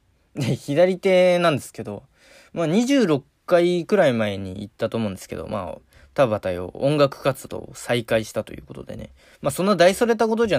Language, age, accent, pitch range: Japanese, 20-39, native, 105-145 Hz